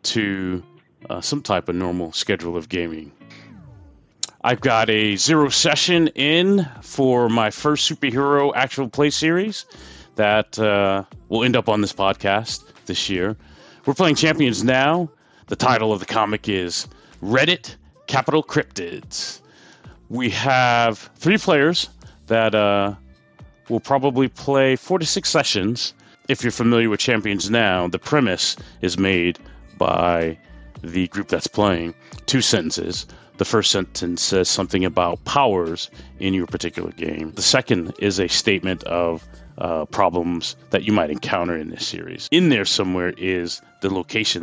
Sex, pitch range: male, 90-135 Hz